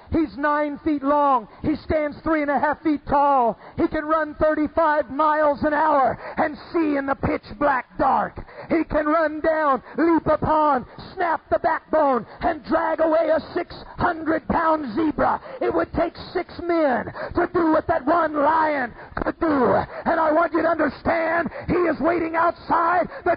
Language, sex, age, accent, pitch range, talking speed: English, male, 50-69, American, 305-365 Hz, 165 wpm